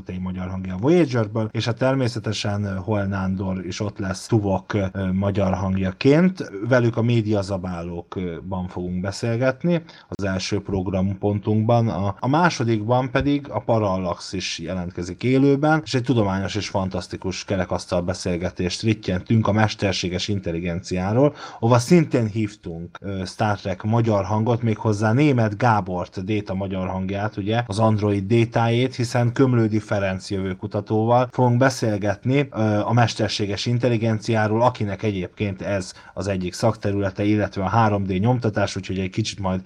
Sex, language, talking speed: male, Hungarian, 125 wpm